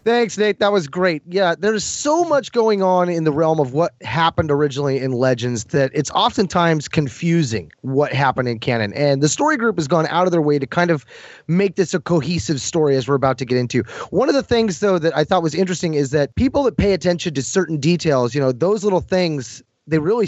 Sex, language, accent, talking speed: male, English, American, 230 wpm